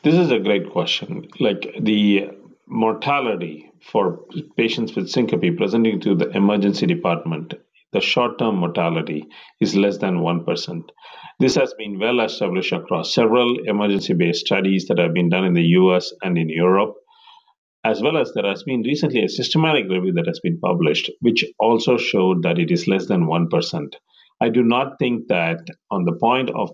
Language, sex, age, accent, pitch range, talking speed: English, male, 50-69, Indian, 90-145 Hz, 170 wpm